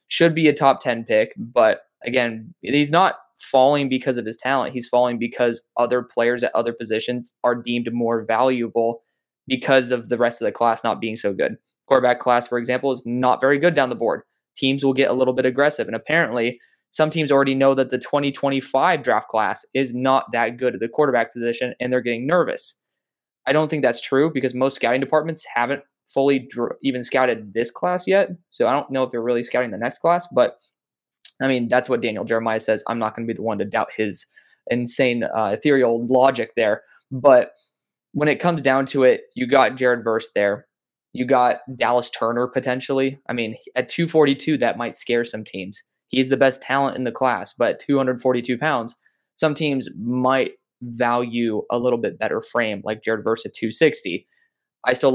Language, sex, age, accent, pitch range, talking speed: English, male, 20-39, American, 120-135 Hz, 195 wpm